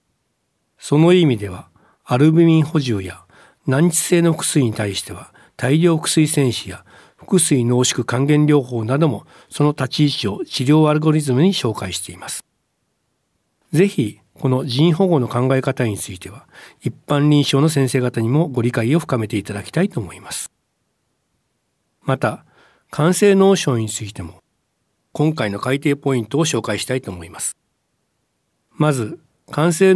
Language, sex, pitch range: Japanese, male, 115-165 Hz